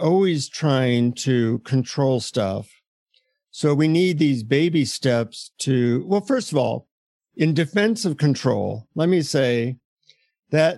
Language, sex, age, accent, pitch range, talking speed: English, male, 50-69, American, 125-165 Hz, 135 wpm